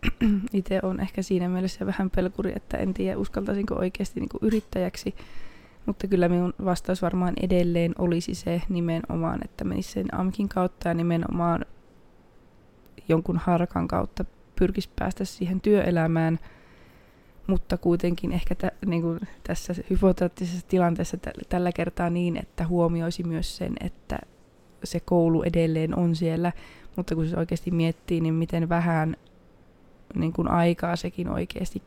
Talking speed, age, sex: 135 wpm, 20-39, female